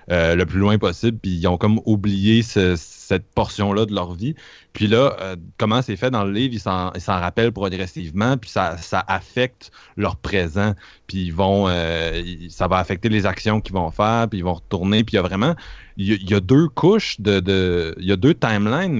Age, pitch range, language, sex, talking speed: 30-49, 95-115 Hz, French, male, 220 wpm